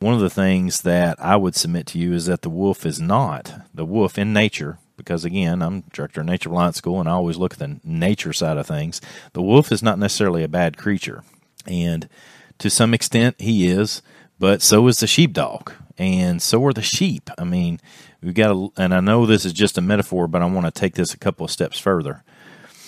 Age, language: 40-59, English